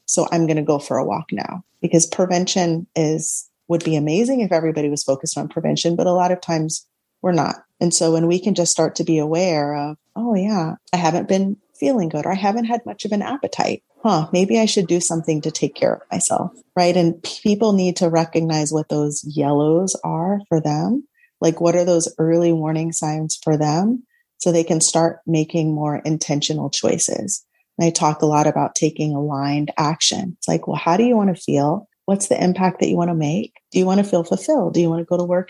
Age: 30-49